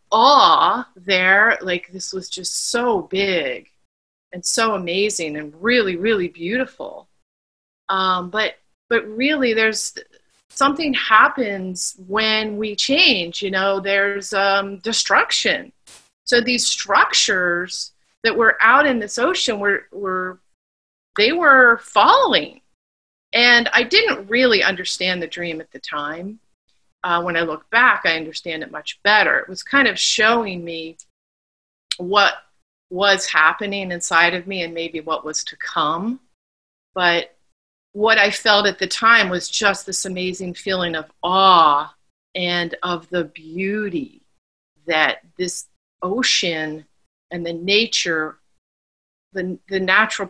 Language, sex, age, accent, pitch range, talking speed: English, female, 30-49, American, 170-215 Hz, 130 wpm